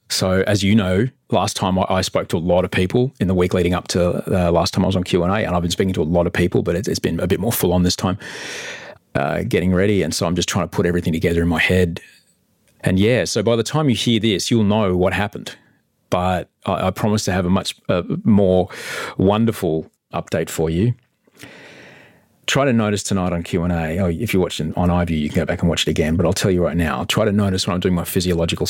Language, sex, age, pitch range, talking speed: English, male, 30-49, 85-100 Hz, 255 wpm